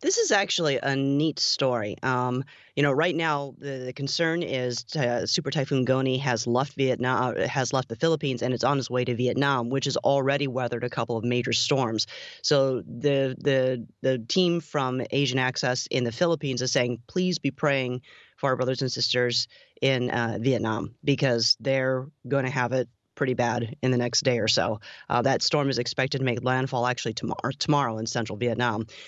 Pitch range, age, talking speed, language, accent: 125-145 Hz, 30-49, 195 wpm, English, American